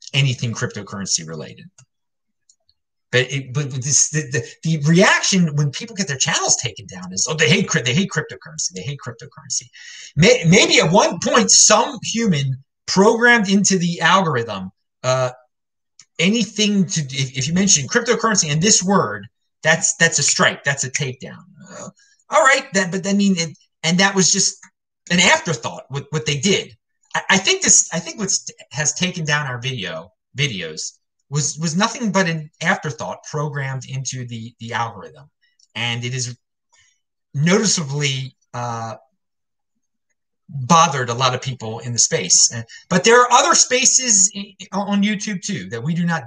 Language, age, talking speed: English, 30-49, 165 wpm